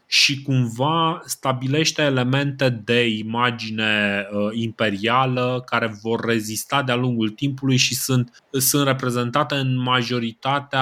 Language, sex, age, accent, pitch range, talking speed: Romanian, male, 20-39, native, 110-135 Hz, 105 wpm